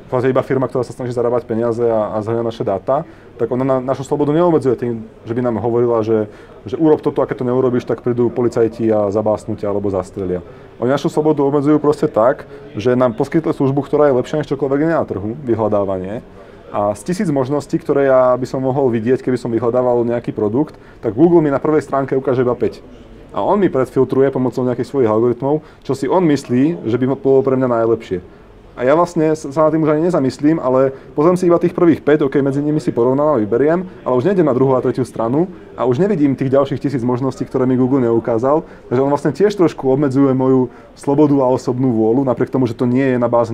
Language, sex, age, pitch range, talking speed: Slovak, male, 30-49, 120-145 Hz, 220 wpm